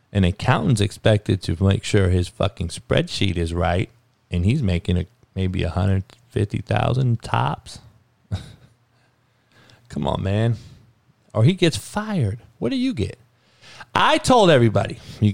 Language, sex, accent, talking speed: English, male, American, 130 wpm